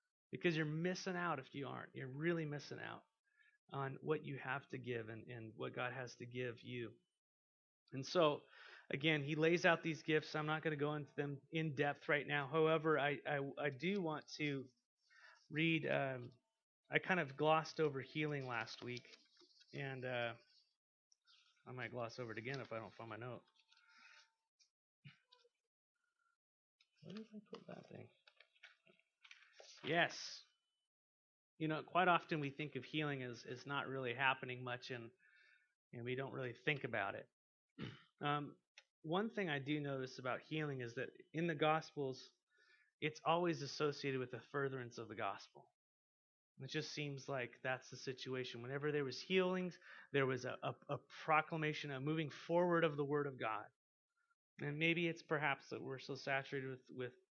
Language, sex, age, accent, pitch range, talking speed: English, male, 30-49, American, 130-160 Hz, 165 wpm